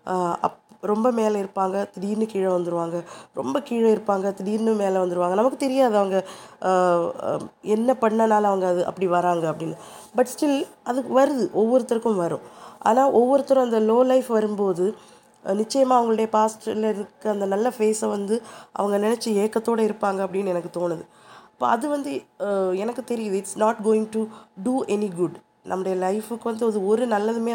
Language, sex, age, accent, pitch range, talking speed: Tamil, female, 20-39, native, 185-225 Hz, 145 wpm